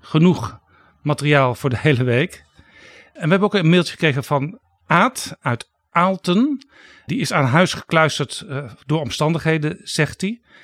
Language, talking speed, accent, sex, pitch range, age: Dutch, 150 wpm, Dutch, male, 125-175 Hz, 50-69